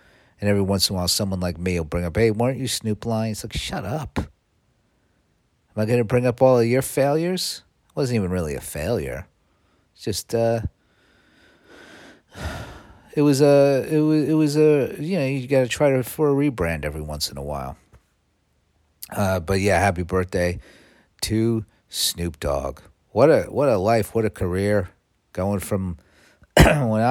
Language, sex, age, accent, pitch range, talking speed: English, male, 50-69, American, 90-120 Hz, 175 wpm